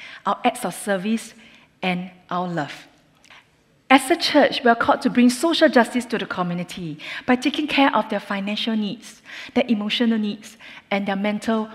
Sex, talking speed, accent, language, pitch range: female, 170 wpm, Malaysian, English, 190-245 Hz